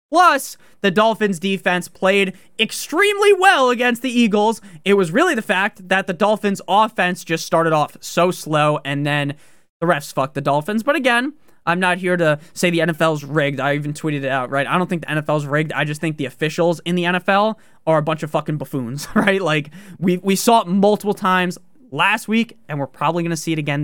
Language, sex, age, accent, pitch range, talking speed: English, male, 20-39, American, 160-195 Hz, 215 wpm